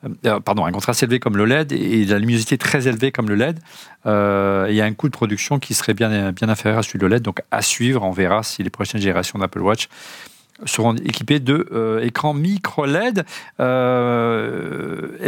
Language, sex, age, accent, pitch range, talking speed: French, male, 40-59, French, 110-145 Hz, 190 wpm